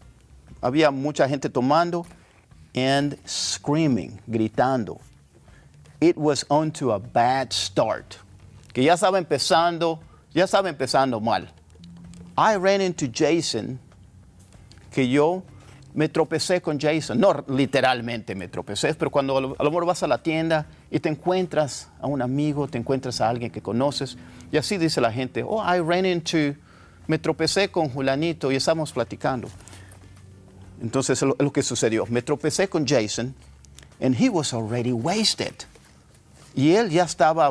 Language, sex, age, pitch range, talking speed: English, male, 50-69, 110-160 Hz, 145 wpm